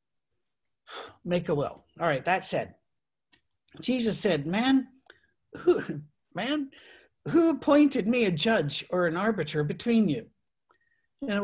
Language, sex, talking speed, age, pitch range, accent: English, male, 125 wpm, 50-69, 160-225 Hz, American